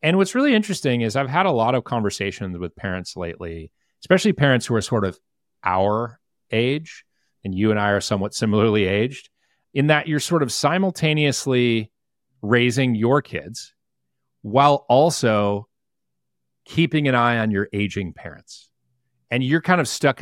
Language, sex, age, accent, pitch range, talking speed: English, male, 40-59, American, 100-140 Hz, 155 wpm